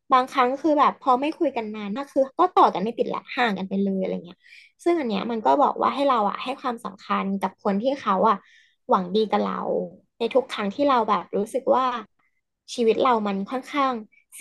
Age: 20-39